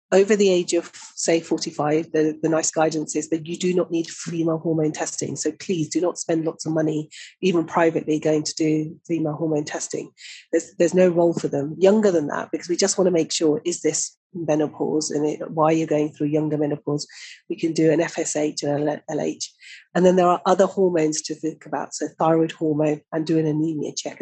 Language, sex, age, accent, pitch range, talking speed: English, female, 40-59, British, 155-170 Hz, 220 wpm